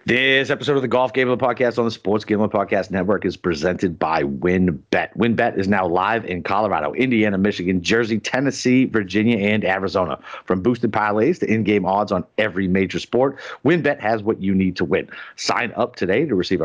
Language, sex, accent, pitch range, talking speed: English, male, American, 90-115 Hz, 185 wpm